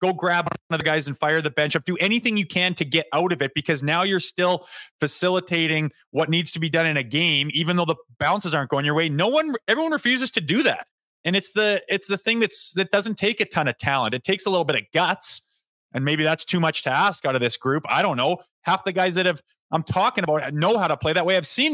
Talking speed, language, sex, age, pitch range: 275 wpm, English, male, 20-39, 155-190 Hz